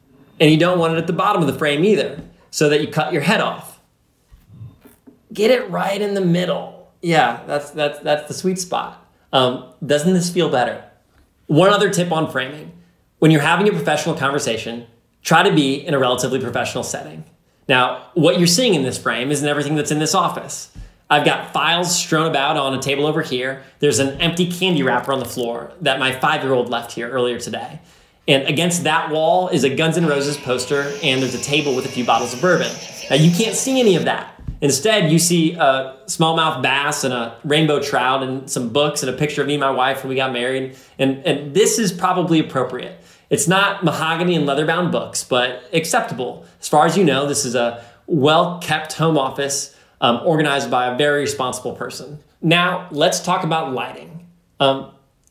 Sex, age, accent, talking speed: male, 20-39, American, 200 wpm